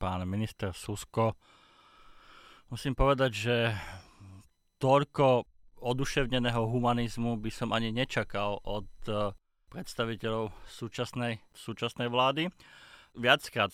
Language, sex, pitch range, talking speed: Slovak, male, 100-130 Hz, 85 wpm